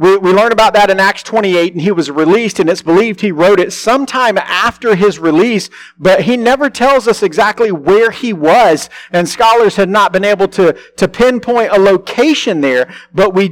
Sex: male